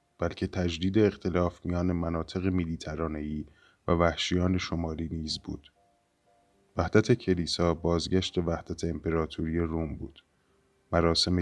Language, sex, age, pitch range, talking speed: Persian, male, 20-39, 85-95 Hz, 100 wpm